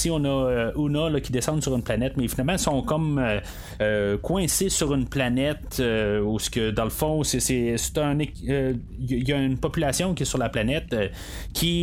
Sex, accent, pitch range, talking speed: male, Canadian, 115-150 Hz, 210 wpm